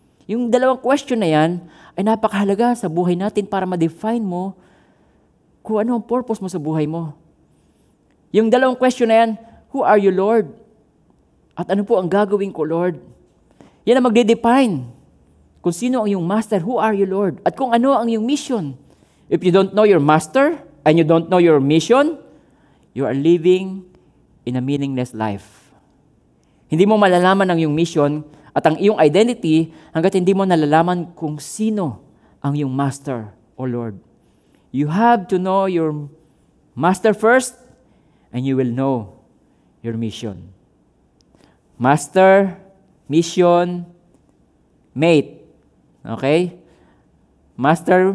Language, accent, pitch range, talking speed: Filipino, native, 140-205 Hz, 140 wpm